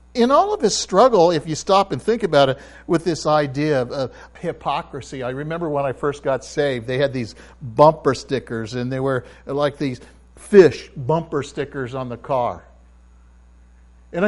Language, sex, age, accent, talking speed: English, male, 60-79, American, 175 wpm